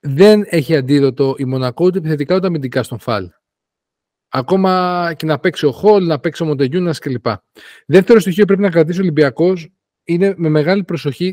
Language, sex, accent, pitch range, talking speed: Greek, male, native, 140-175 Hz, 180 wpm